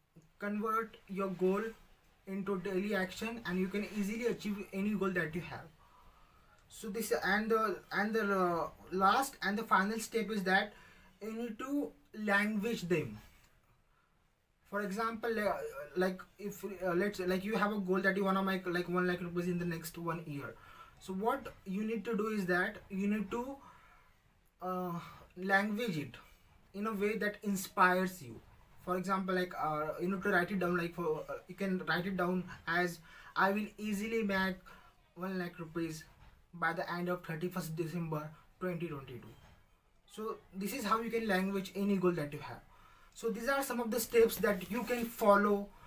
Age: 20-39